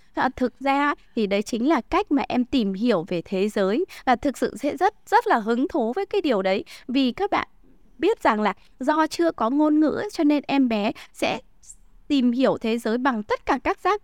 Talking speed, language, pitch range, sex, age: 225 wpm, Vietnamese, 210-285 Hz, female, 20-39